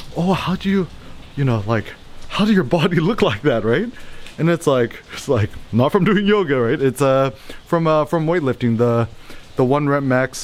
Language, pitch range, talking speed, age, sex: English, 120-160 Hz, 205 wpm, 30-49, male